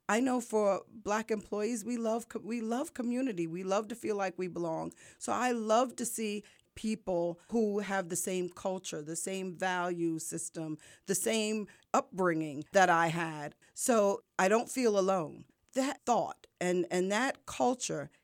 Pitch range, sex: 175-240 Hz, female